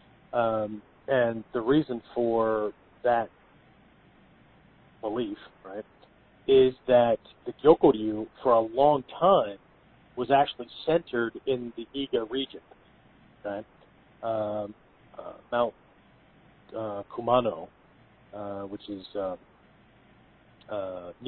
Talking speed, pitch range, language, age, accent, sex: 95 wpm, 100-125 Hz, English, 50-69, American, male